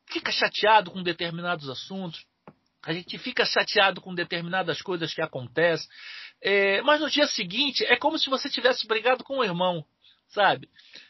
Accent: Brazilian